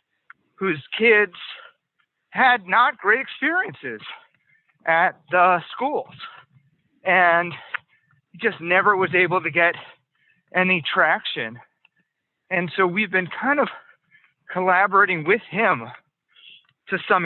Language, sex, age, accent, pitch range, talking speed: English, male, 40-59, American, 155-205 Hz, 105 wpm